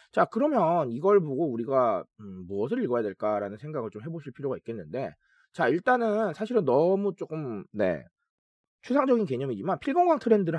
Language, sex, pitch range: Korean, male, 140-230 Hz